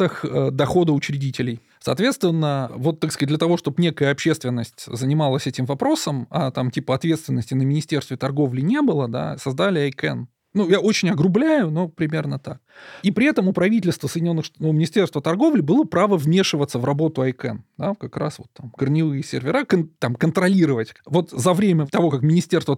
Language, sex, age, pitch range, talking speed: Russian, male, 20-39, 135-185 Hz, 175 wpm